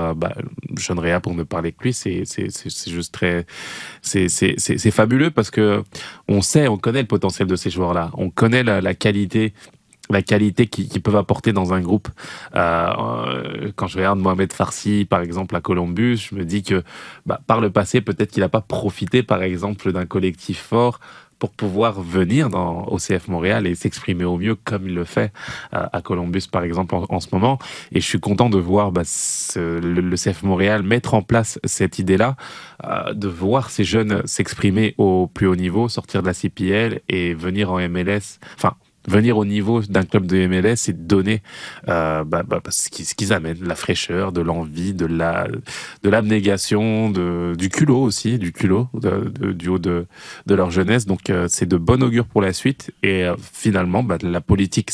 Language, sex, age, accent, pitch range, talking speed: French, male, 20-39, French, 90-110 Hz, 195 wpm